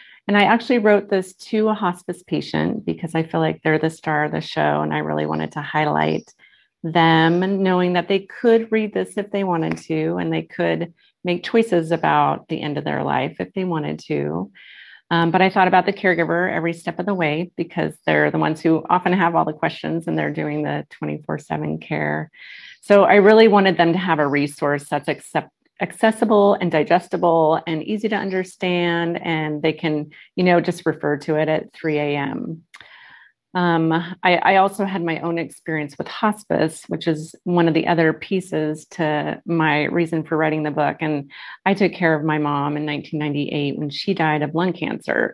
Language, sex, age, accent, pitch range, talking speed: English, female, 30-49, American, 150-185 Hz, 195 wpm